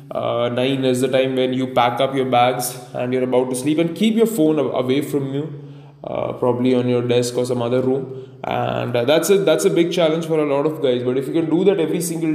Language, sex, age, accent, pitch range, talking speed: English, male, 20-39, Indian, 130-165 Hz, 255 wpm